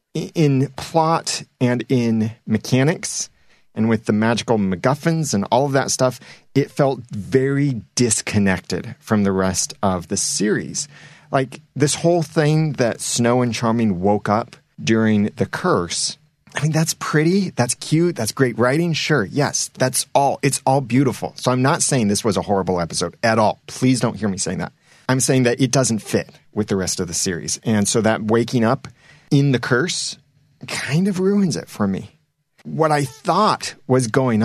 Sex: male